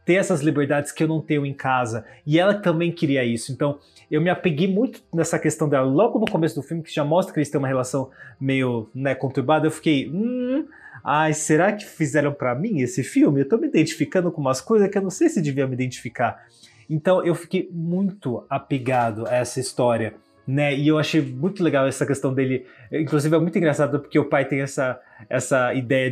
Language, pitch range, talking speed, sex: Portuguese, 130-165 Hz, 210 wpm, male